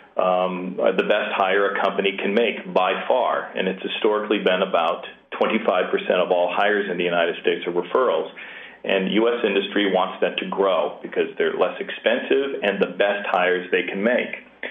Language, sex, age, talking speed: English, male, 40-59, 175 wpm